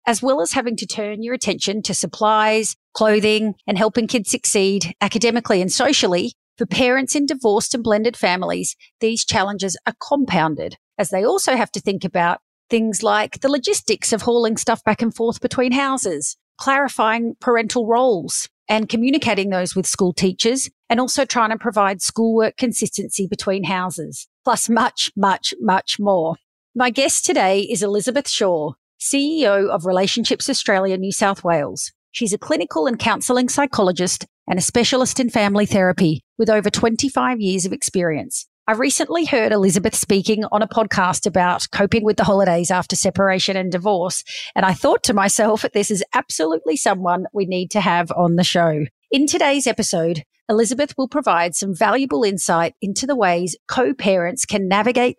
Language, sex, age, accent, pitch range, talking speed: English, female, 40-59, Australian, 190-240 Hz, 165 wpm